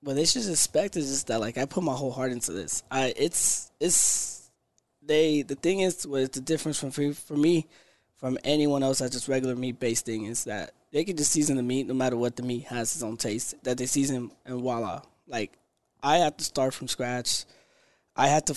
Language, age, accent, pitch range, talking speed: English, 20-39, American, 125-145 Hz, 230 wpm